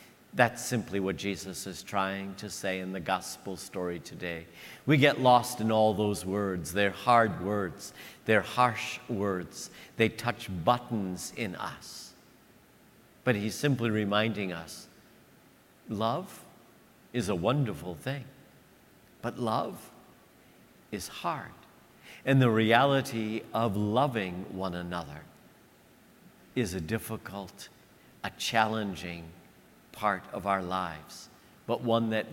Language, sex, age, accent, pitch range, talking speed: English, male, 50-69, American, 95-125 Hz, 120 wpm